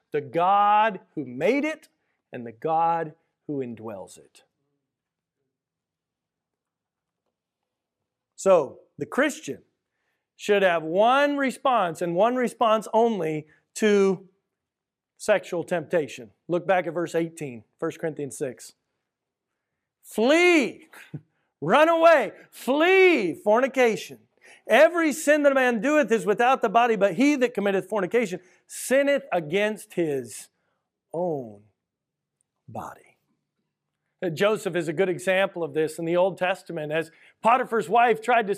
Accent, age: American, 40-59